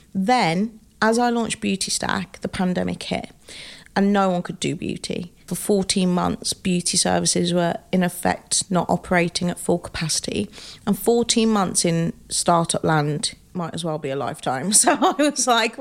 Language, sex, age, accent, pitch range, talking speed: English, female, 40-59, British, 175-220 Hz, 165 wpm